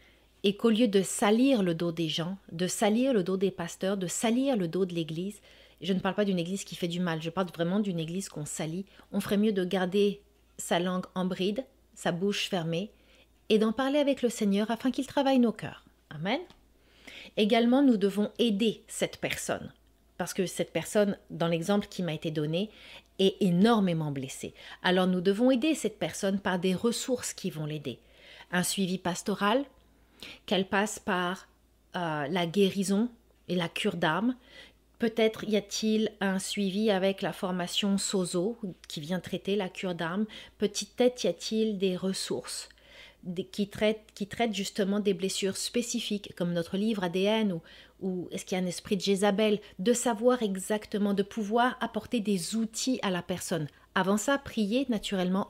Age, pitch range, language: 40-59, 180-220 Hz, French